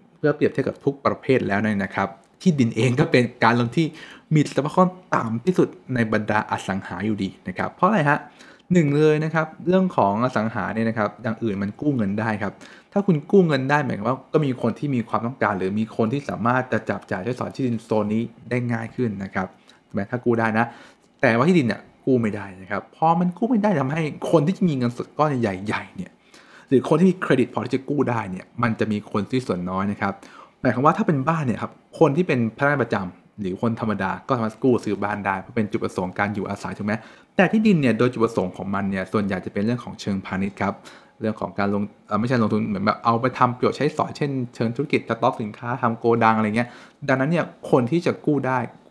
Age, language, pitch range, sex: 20-39, English, 105-145 Hz, male